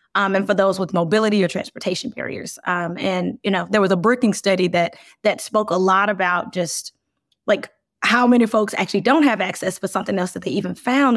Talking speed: 215 wpm